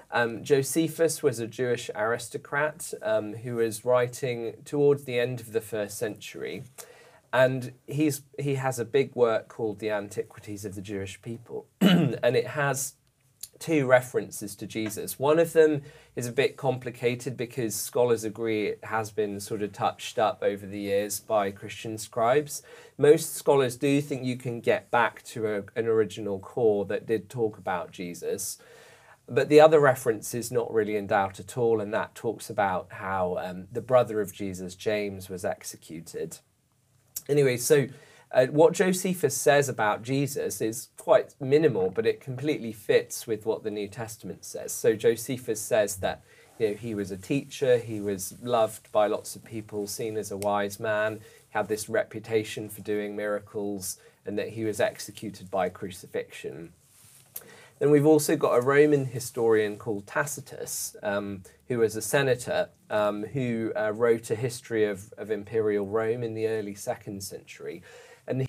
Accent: British